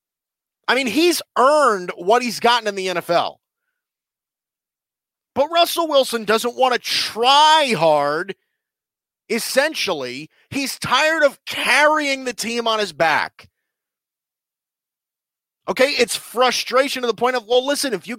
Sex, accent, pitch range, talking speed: male, American, 185-265 Hz, 130 wpm